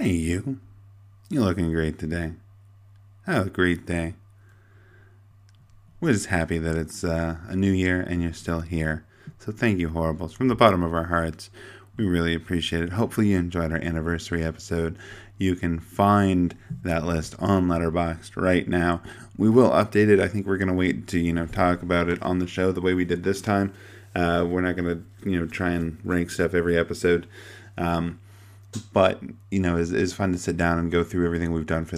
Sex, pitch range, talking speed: male, 85-100 Hz, 200 wpm